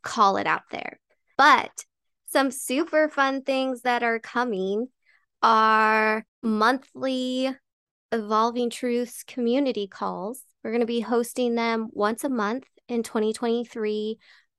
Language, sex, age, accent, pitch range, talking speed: English, female, 20-39, American, 215-250 Hz, 120 wpm